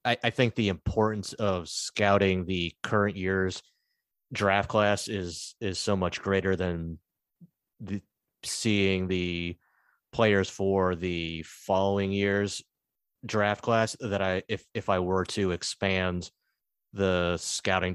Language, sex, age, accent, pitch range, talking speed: English, male, 30-49, American, 90-100 Hz, 125 wpm